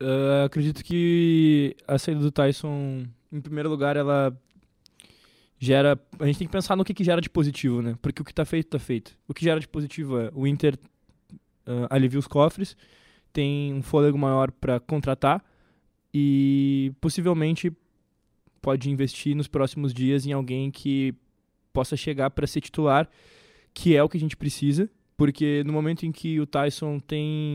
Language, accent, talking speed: Portuguese, Brazilian, 170 wpm